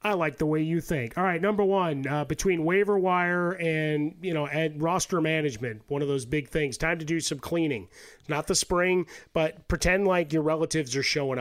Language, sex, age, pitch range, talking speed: English, male, 30-49, 135-160 Hz, 200 wpm